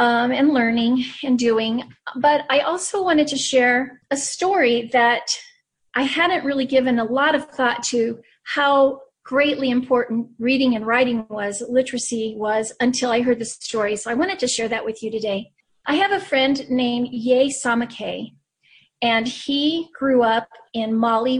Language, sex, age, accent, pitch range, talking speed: English, female, 40-59, American, 225-265 Hz, 165 wpm